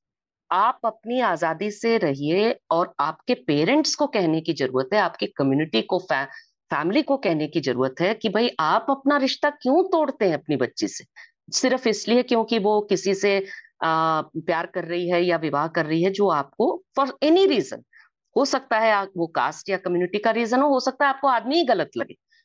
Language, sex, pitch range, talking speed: Hindi, female, 180-285 Hz, 190 wpm